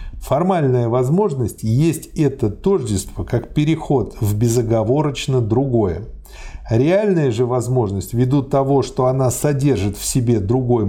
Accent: native